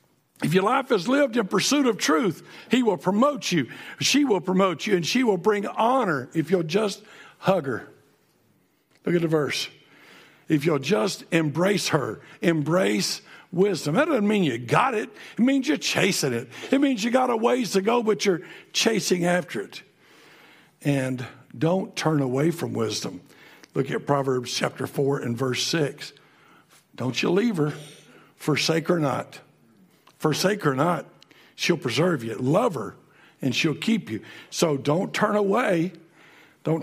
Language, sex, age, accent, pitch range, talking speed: English, male, 60-79, American, 145-205 Hz, 165 wpm